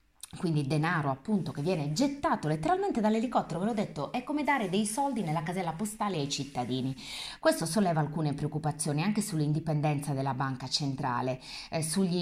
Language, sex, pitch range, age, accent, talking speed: Italian, female, 145-190 Hz, 20-39, native, 155 wpm